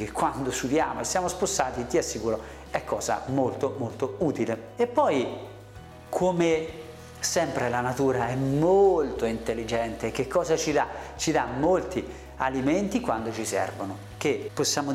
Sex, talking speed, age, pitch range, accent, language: male, 135 wpm, 40-59, 130-190 Hz, native, Italian